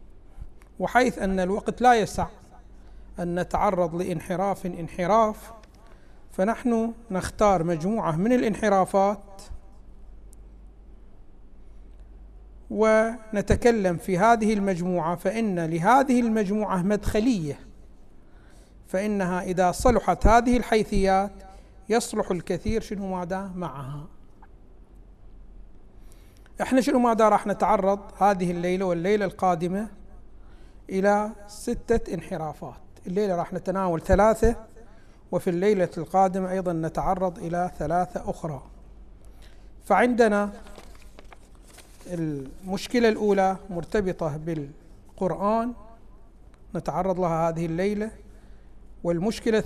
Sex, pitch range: male, 170-215 Hz